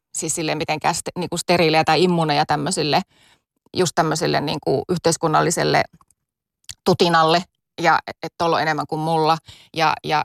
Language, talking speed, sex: Finnish, 105 wpm, female